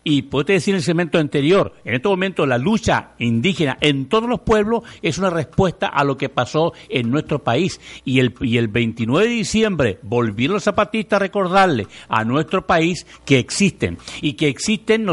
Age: 60-79